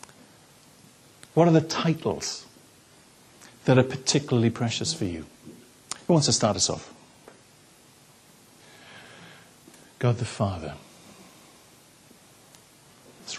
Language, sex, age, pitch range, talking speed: English, male, 60-79, 115-145 Hz, 90 wpm